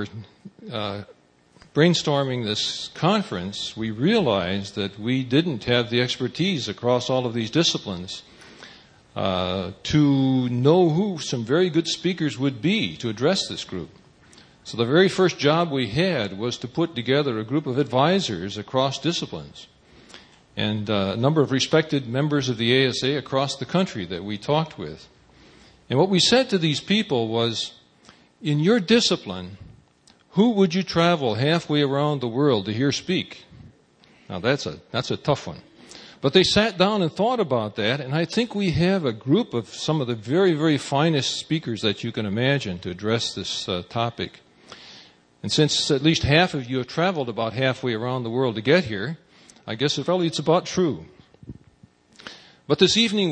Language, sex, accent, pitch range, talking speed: English, male, American, 115-170 Hz, 170 wpm